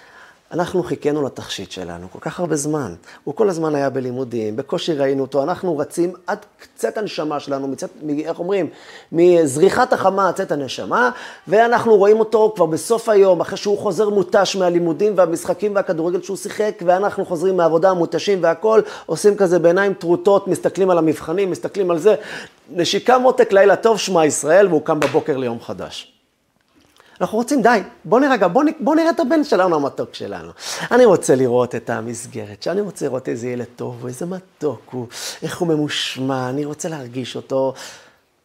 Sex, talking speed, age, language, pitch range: male, 165 wpm, 30-49, Hebrew, 130-195 Hz